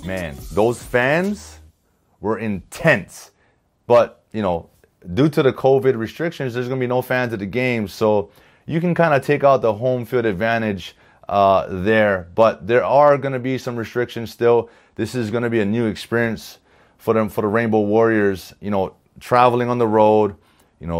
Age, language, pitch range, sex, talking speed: 30-49, English, 110-140 Hz, male, 190 wpm